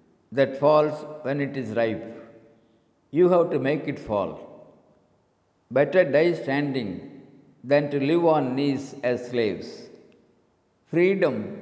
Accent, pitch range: native, 125-155 Hz